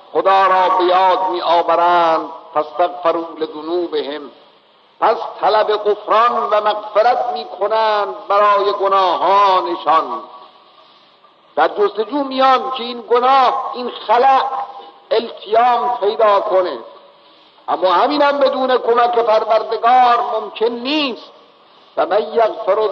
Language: Persian